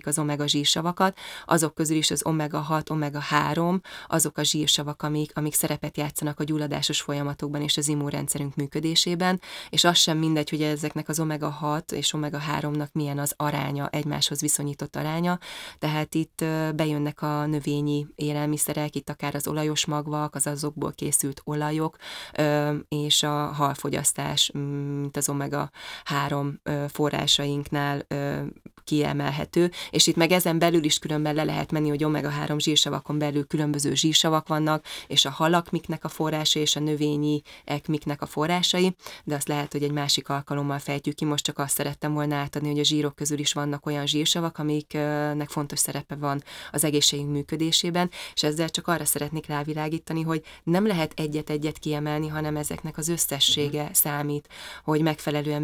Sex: female